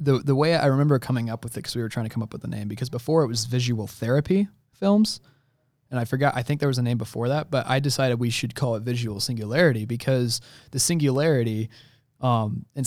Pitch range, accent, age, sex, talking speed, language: 115-135 Hz, American, 20-39, male, 240 wpm, English